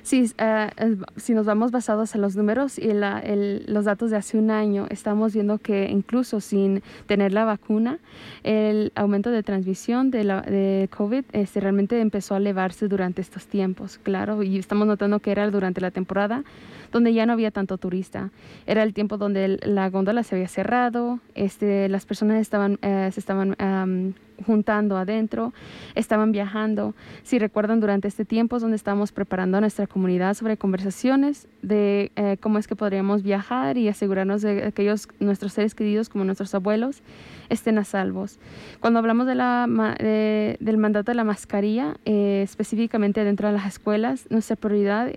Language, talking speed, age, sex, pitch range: English, 180 wpm, 20-39, female, 200-220 Hz